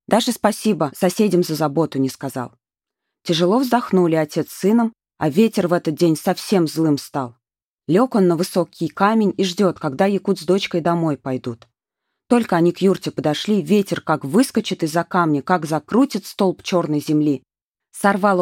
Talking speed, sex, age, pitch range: 160 wpm, female, 20-39, 155-190 Hz